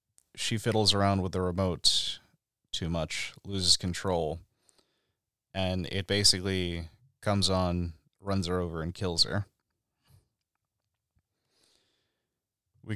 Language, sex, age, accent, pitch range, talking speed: English, male, 30-49, American, 90-105 Hz, 100 wpm